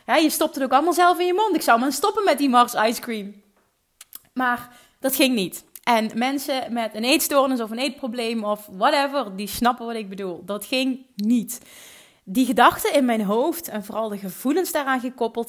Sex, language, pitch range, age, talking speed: female, Dutch, 210-270 Hz, 30-49, 200 wpm